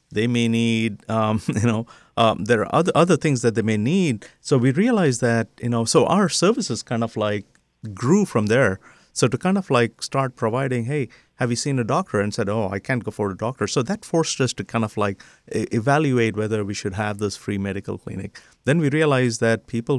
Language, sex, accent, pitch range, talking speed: English, male, Indian, 105-130 Hz, 225 wpm